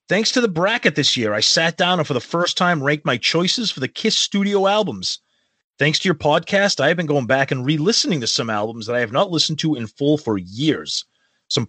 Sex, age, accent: male, 30-49, American